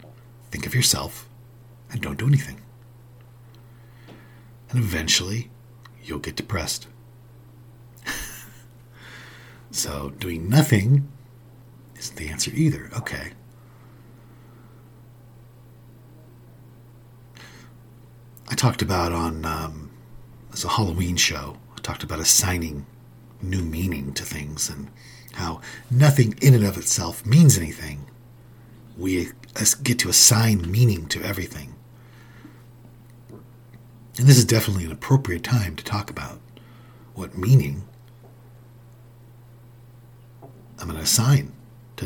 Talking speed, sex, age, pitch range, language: 100 wpm, male, 50-69, 110-120 Hz, English